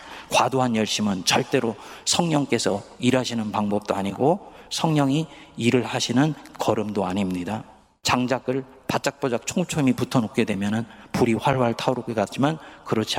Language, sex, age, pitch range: Korean, male, 40-59, 105-130 Hz